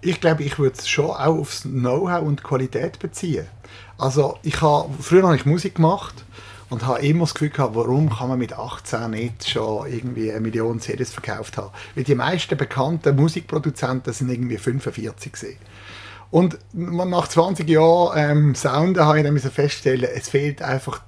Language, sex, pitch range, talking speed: German, male, 120-165 Hz, 175 wpm